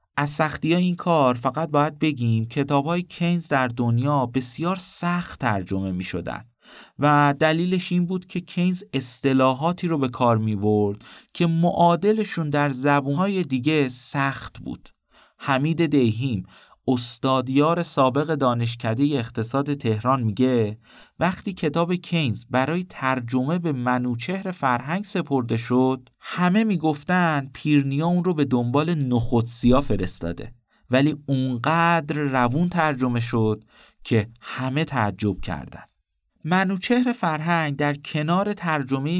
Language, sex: Persian, male